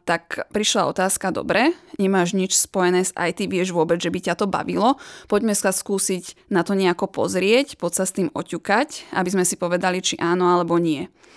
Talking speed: 190 wpm